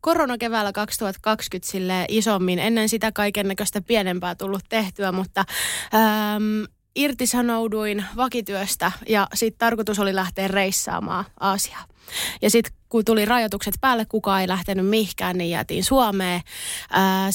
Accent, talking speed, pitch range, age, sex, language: native, 130 wpm, 185-220 Hz, 20-39, female, Finnish